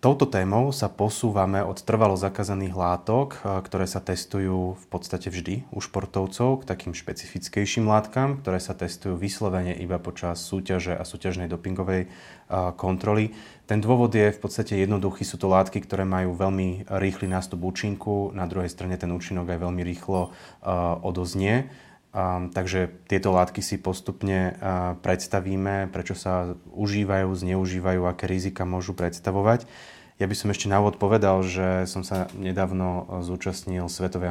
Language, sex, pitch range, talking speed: Slovak, male, 90-100 Hz, 145 wpm